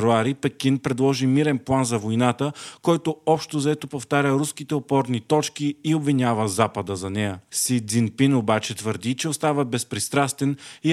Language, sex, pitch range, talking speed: Bulgarian, male, 115-145 Hz, 145 wpm